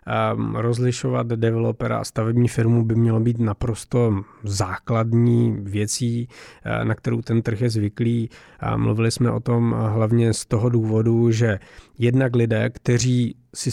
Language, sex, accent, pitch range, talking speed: Czech, male, native, 110-120 Hz, 130 wpm